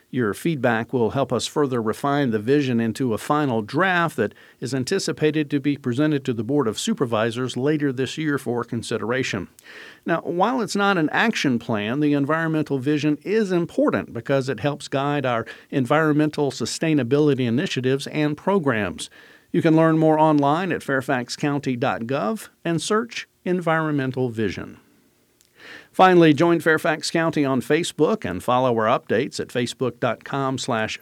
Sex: male